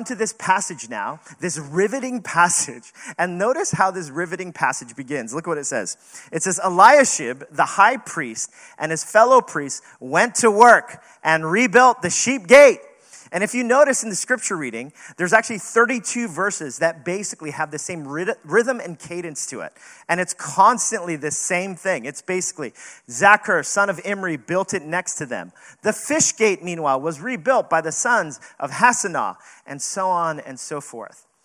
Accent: American